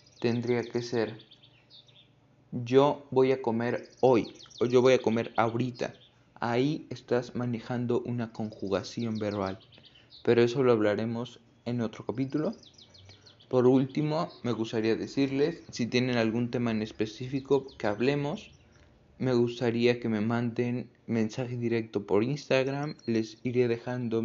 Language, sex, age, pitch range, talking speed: Spanish, male, 20-39, 115-135 Hz, 130 wpm